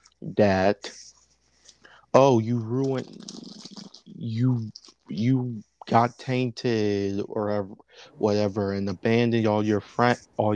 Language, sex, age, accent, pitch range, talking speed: English, male, 30-49, American, 105-140 Hz, 90 wpm